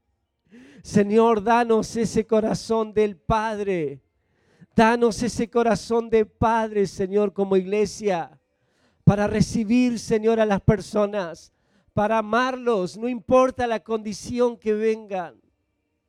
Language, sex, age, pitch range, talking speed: Spanish, male, 50-69, 210-240 Hz, 105 wpm